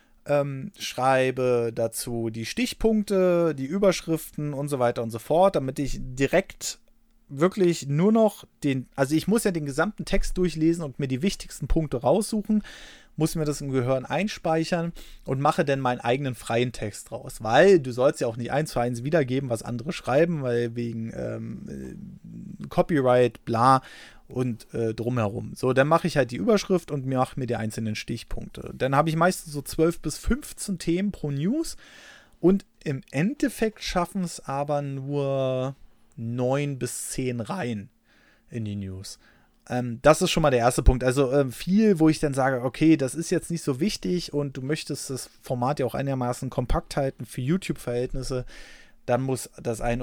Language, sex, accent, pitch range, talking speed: German, male, German, 125-170 Hz, 175 wpm